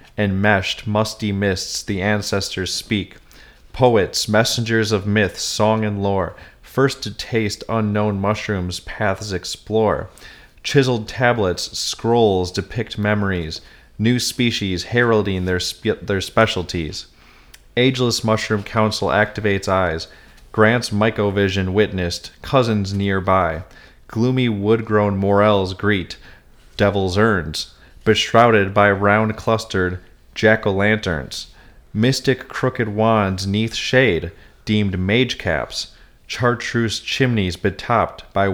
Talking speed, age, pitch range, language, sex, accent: 100 wpm, 30-49, 95-115 Hz, English, male, American